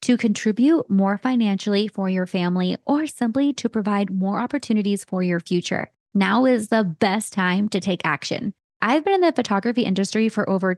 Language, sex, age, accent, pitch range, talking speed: English, female, 20-39, American, 185-230 Hz, 180 wpm